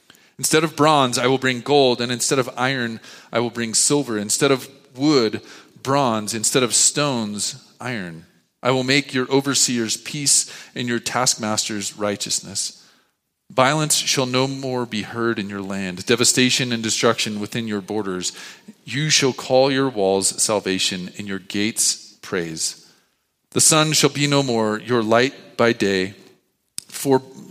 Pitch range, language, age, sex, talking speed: 105-130 Hz, English, 40-59, male, 150 wpm